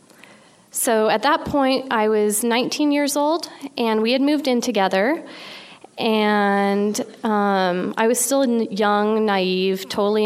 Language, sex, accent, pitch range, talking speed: English, female, American, 200-245 Hz, 135 wpm